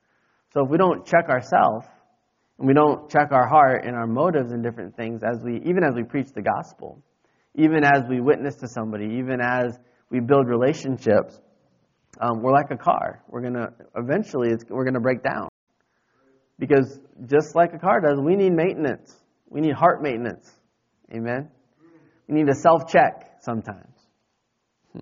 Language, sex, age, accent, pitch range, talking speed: English, male, 20-39, American, 125-170 Hz, 165 wpm